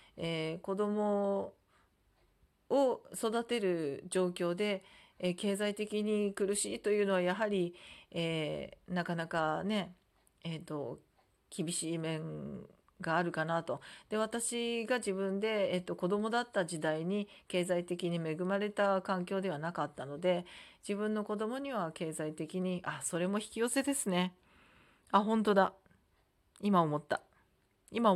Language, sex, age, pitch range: Japanese, female, 40-59, 175-210 Hz